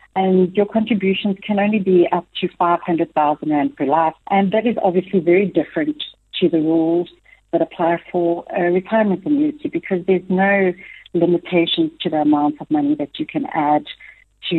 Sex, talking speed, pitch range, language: female, 170 wpm, 165-220 Hz, English